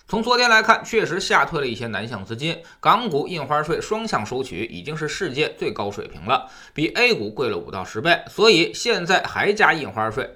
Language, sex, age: Chinese, male, 20-39